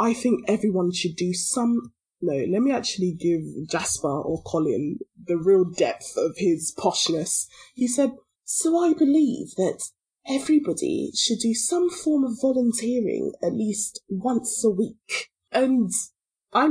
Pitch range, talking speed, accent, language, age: 180-250 Hz, 145 wpm, British, English, 20-39